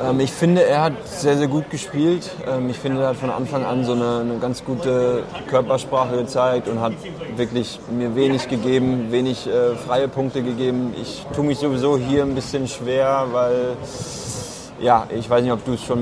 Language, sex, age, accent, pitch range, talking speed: German, male, 20-39, German, 120-135 Hz, 185 wpm